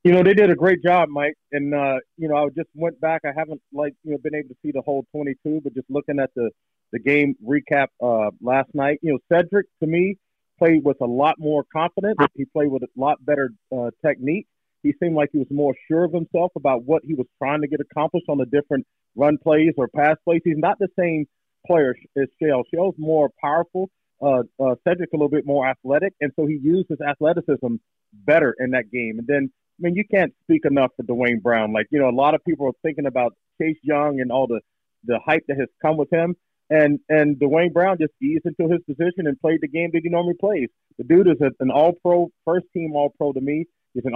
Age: 40-59